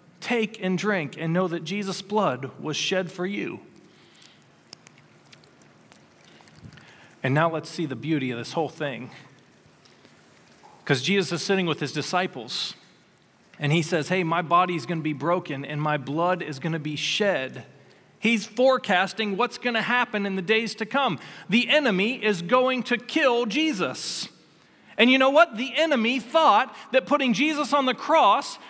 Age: 40-59